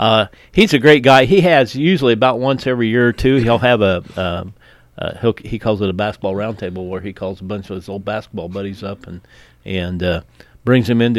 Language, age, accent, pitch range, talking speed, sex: English, 40-59, American, 95-120 Hz, 235 wpm, male